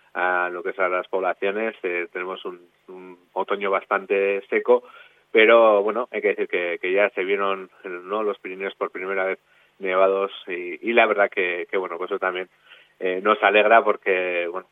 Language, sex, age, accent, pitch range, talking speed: Spanish, male, 30-49, Spanish, 95-120 Hz, 185 wpm